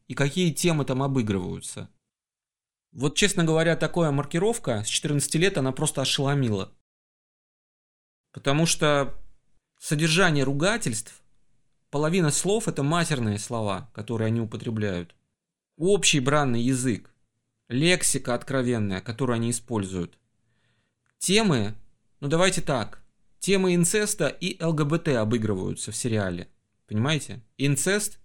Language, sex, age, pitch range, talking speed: Russian, male, 30-49, 115-170 Hz, 105 wpm